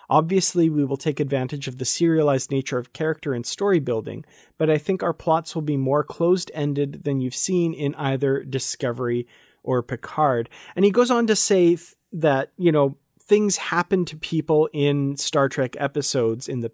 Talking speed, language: 180 wpm, English